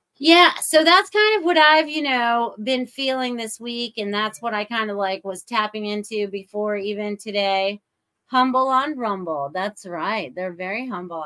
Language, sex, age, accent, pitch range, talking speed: English, female, 30-49, American, 185-235 Hz, 180 wpm